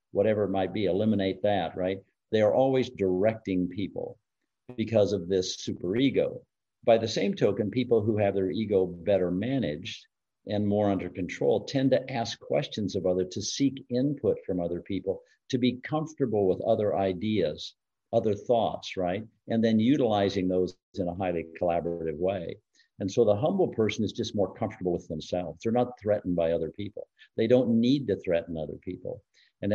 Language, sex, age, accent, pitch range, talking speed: English, male, 50-69, American, 90-110 Hz, 175 wpm